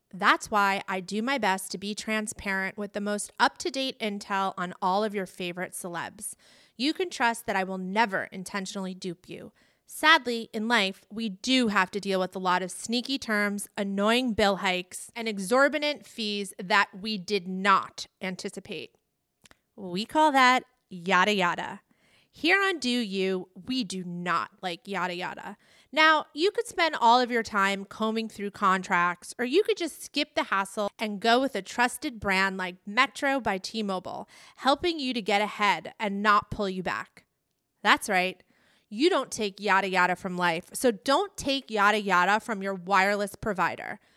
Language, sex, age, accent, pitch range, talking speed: English, female, 30-49, American, 190-245 Hz, 170 wpm